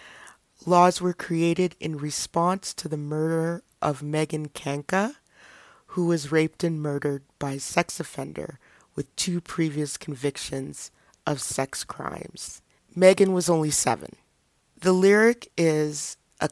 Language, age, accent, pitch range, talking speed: English, 30-49, American, 150-185 Hz, 125 wpm